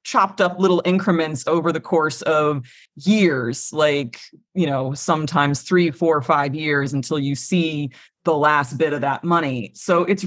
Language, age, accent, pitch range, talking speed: English, 30-49, American, 140-190 Hz, 165 wpm